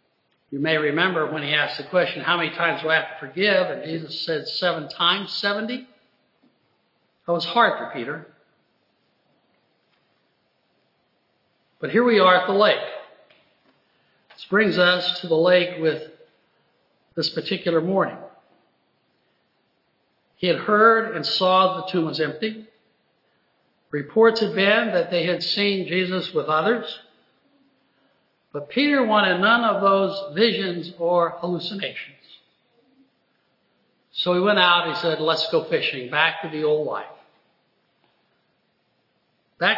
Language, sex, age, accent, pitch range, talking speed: English, male, 60-79, American, 160-210 Hz, 135 wpm